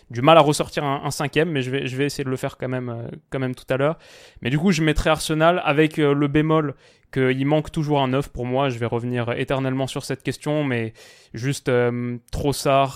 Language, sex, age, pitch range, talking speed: French, male, 20-39, 125-145 Hz, 240 wpm